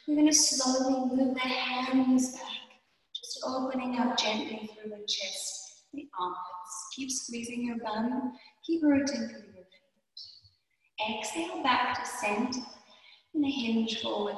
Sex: female